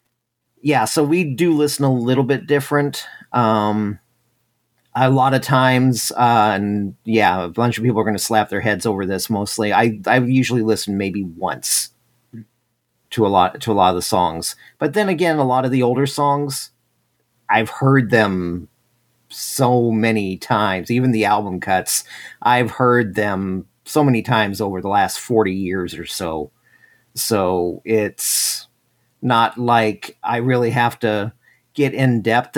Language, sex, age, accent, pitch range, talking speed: English, male, 40-59, American, 105-125 Hz, 160 wpm